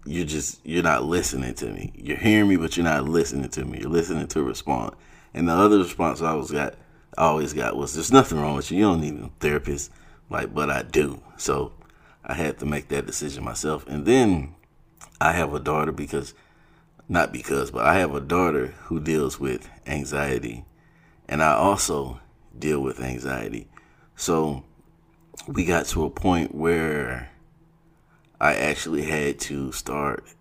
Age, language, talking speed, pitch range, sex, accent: 30-49, English, 180 wpm, 70-85 Hz, male, American